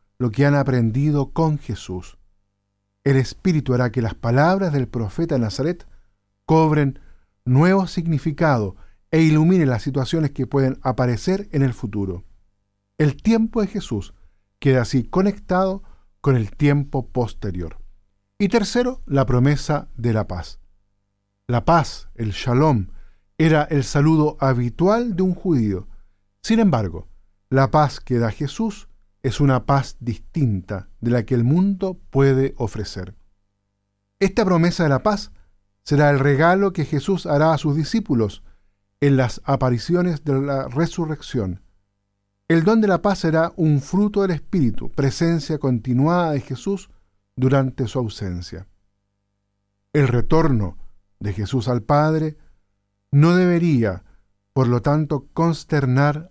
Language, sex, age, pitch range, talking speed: Spanish, male, 50-69, 100-155 Hz, 130 wpm